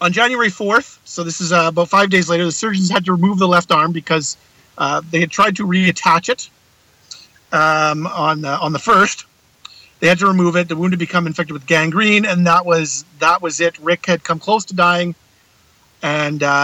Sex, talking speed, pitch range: male, 210 wpm, 155-190 Hz